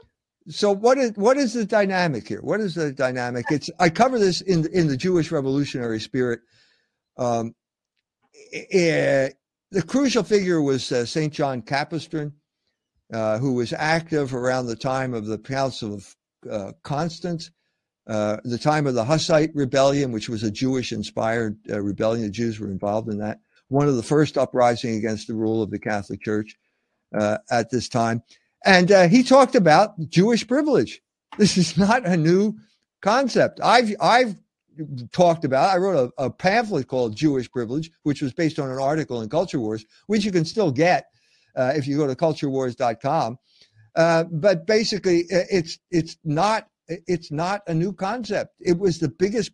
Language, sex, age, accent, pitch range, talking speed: English, male, 60-79, American, 125-190 Hz, 170 wpm